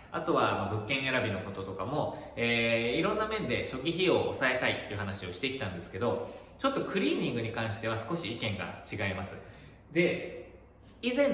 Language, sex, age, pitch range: Japanese, male, 20-39, 105-170 Hz